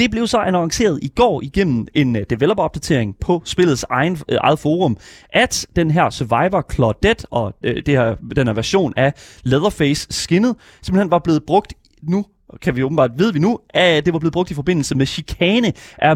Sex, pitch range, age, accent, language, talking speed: male, 125-175 Hz, 30-49, native, Danish, 190 wpm